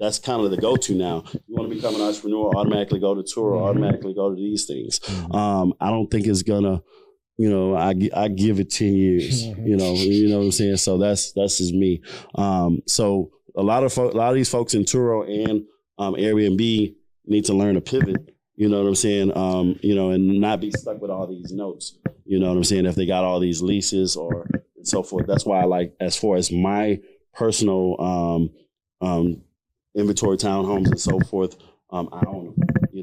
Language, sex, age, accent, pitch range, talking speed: English, male, 20-39, American, 90-105 Hz, 220 wpm